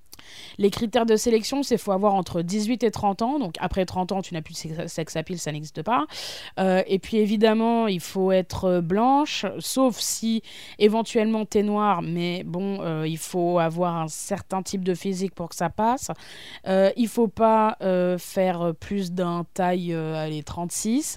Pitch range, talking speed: 175-220 Hz, 195 wpm